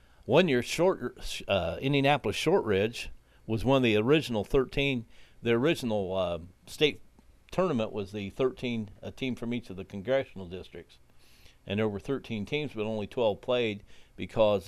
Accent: American